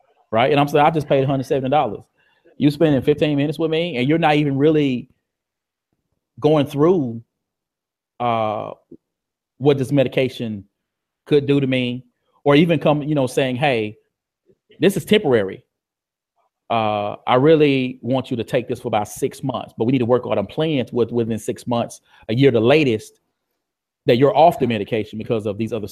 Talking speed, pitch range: 175 wpm, 115-150 Hz